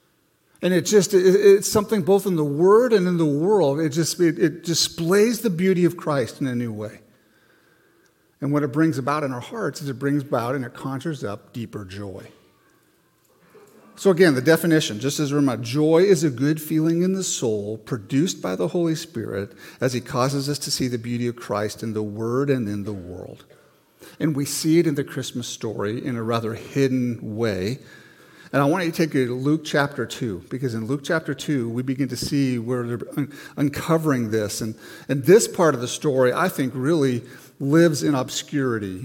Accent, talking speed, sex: American, 205 wpm, male